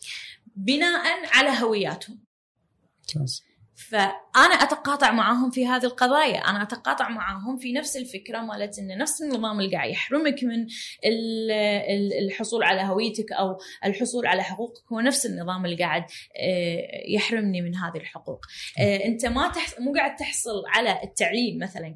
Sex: female